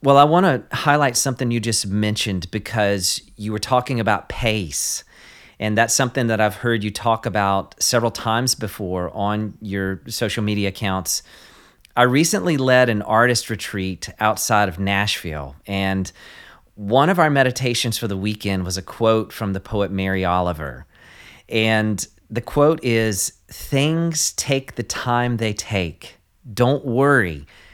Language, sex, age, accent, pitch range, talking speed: English, male, 40-59, American, 95-125 Hz, 145 wpm